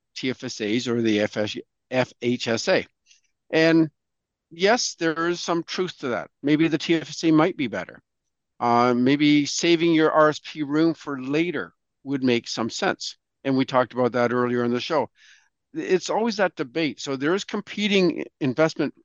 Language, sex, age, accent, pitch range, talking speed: English, male, 50-69, American, 120-165 Hz, 150 wpm